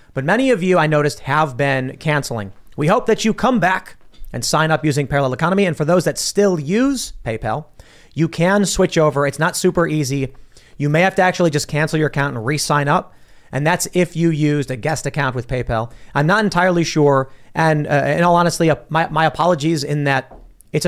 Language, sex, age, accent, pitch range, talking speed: English, male, 30-49, American, 125-165 Hz, 215 wpm